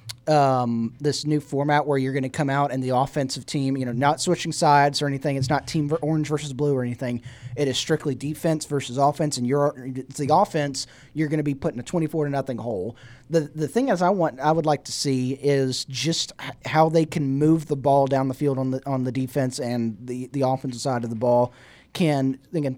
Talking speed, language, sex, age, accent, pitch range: 230 wpm, English, male, 20-39, American, 135-155 Hz